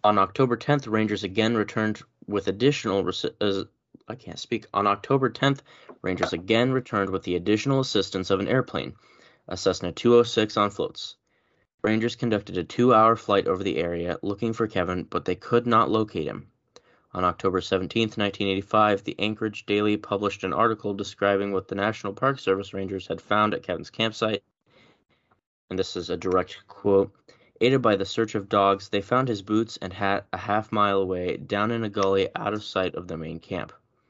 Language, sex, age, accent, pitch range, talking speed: English, male, 20-39, American, 95-110 Hz, 180 wpm